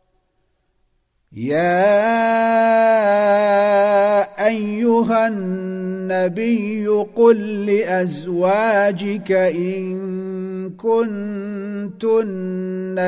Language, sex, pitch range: Arabic, male, 185-210 Hz